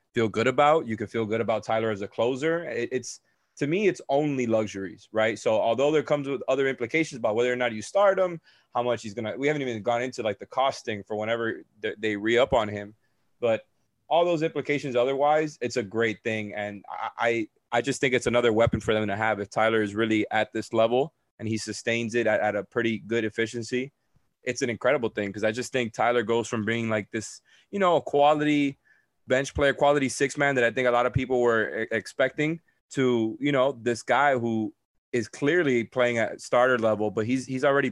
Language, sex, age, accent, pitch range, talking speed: English, male, 20-39, American, 110-130 Hz, 220 wpm